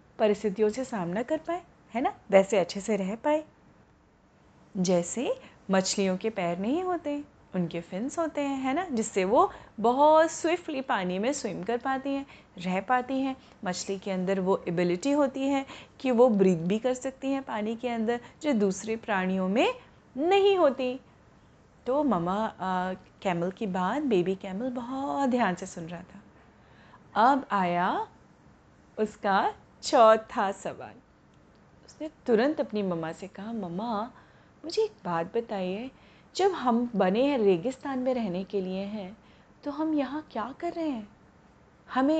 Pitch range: 190-270 Hz